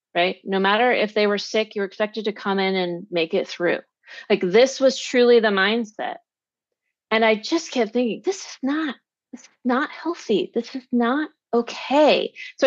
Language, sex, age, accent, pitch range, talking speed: English, female, 30-49, American, 200-285 Hz, 185 wpm